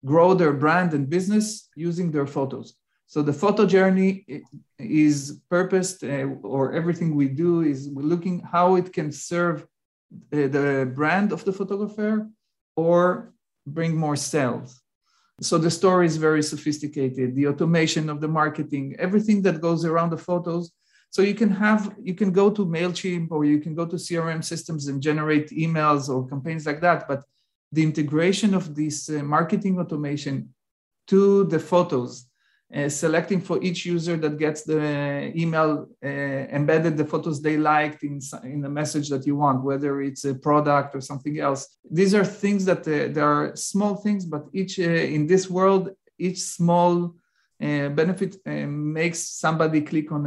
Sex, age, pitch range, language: male, 40-59, 145-180 Hz, English